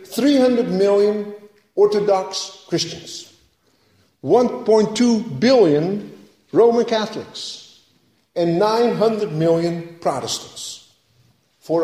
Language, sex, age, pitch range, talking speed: English, male, 50-69, 180-255 Hz, 65 wpm